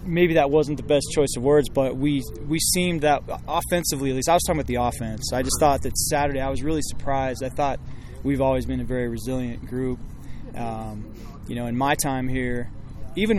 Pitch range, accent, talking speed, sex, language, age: 110-135 Hz, American, 215 wpm, male, English, 20-39